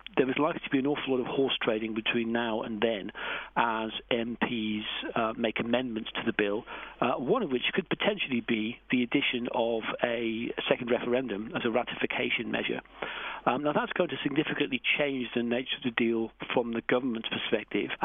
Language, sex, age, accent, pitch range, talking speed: English, male, 50-69, British, 115-135 Hz, 185 wpm